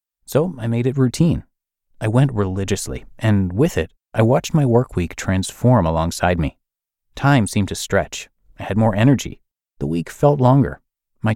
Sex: male